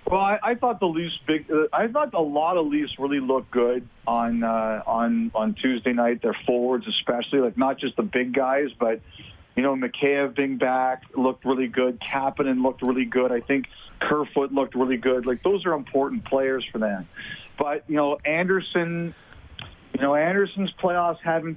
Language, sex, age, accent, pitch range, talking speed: English, male, 40-59, American, 125-160 Hz, 185 wpm